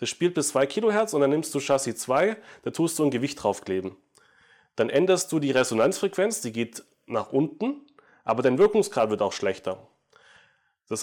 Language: German